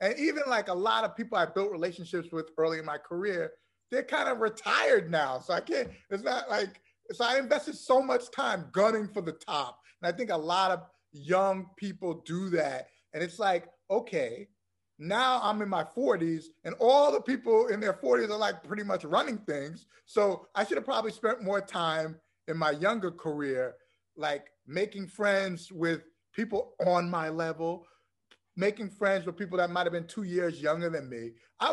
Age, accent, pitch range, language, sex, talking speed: 30-49, American, 165-230 Hz, English, male, 195 wpm